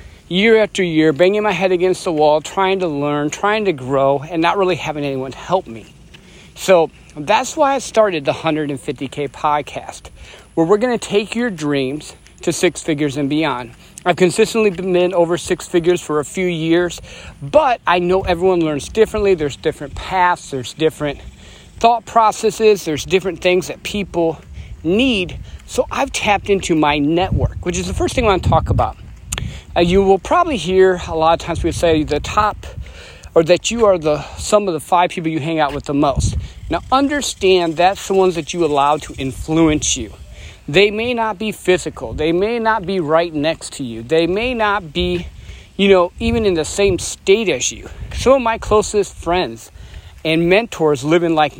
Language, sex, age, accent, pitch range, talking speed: English, male, 40-59, American, 150-200 Hz, 190 wpm